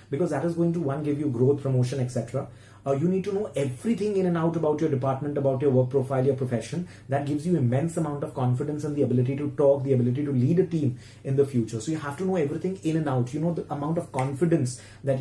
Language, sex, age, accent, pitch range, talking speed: English, male, 30-49, Indian, 125-155 Hz, 260 wpm